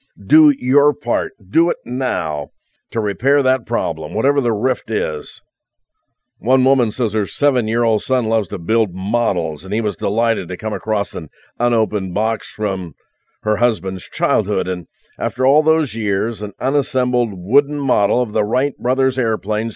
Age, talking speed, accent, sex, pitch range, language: 50-69, 160 wpm, American, male, 110-130 Hz, English